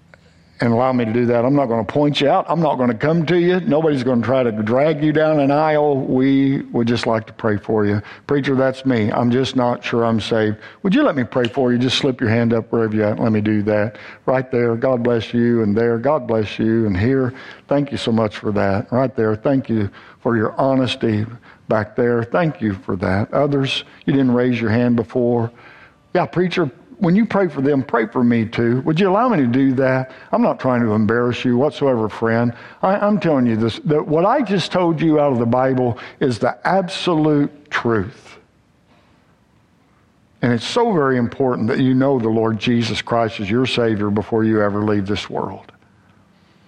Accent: American